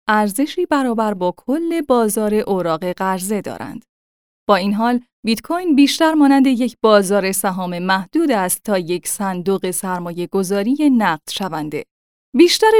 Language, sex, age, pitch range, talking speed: Persian, female, 10-29, 190-280 Hz, 125 wpm